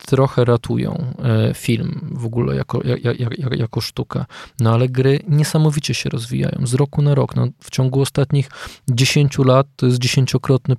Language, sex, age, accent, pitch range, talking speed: Polish, male, 20-39, native, 120-145 Hz, 160 wpm